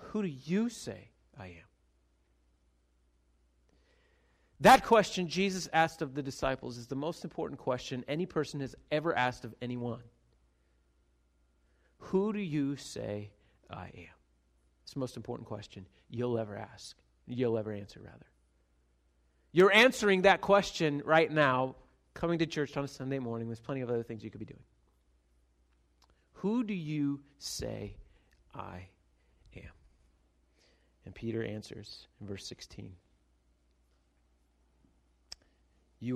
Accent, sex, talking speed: American, male, 130 wpm